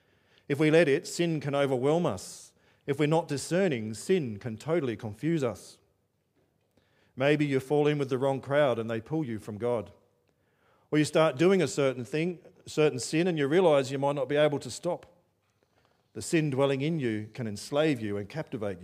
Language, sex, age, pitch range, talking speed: English, male, 40-59, 110-140 Hz, 195 wpm